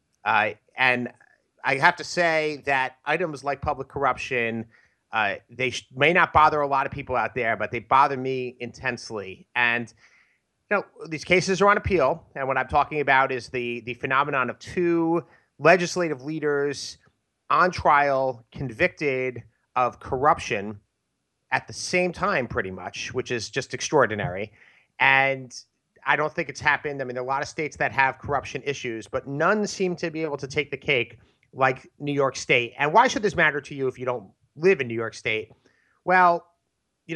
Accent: American